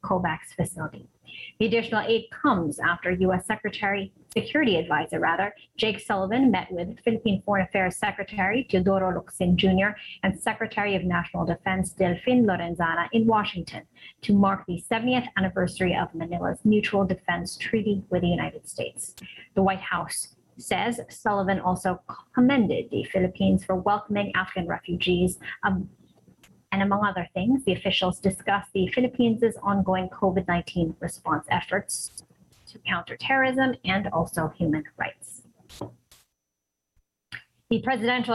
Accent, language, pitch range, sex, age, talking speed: American, English, 185-215 Hz, female, 30-49, 125 wpm